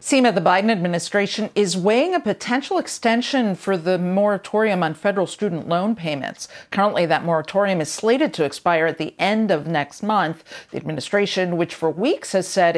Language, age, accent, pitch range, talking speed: English, 50-69, American, 165-210 Hz, 175 wpm